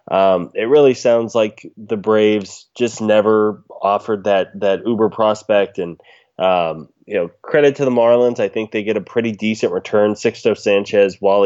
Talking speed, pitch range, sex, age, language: 175 wpm, 95-110 Hz, male, 20-39, English